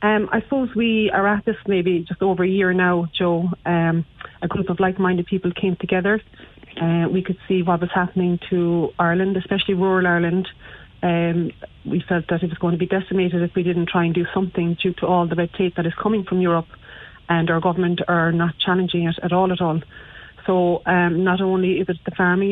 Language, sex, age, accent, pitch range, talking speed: English, female, 30-49, Irish, 170-190 Hz, 220 wpm